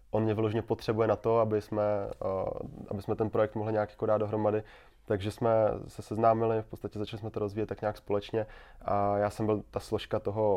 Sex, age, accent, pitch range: male, 20-39, native, 100-110 Hz